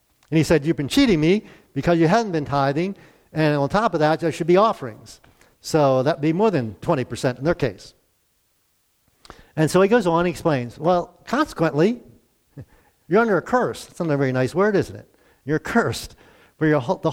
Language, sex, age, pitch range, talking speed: English, male, 50-69, 140-190 Hz, 195 wpm